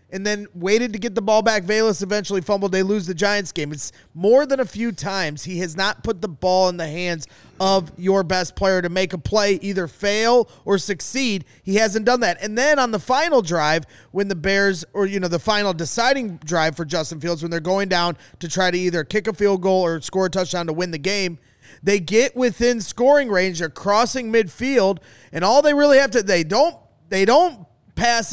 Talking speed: 220 wpm